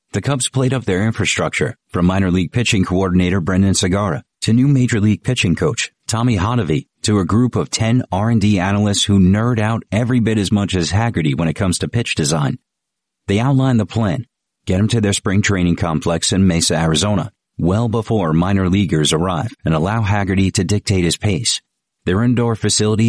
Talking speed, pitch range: 185 wpm, 90-115 Hz